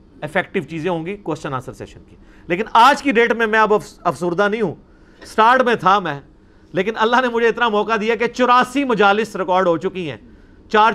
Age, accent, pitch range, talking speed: 50-69, Indian, 165-215 Hz, 190 wpm